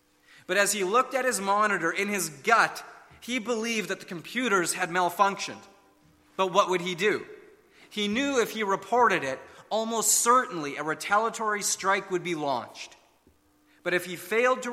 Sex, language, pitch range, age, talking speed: male, English, 160-210 Hz, 30-49, 165 wpm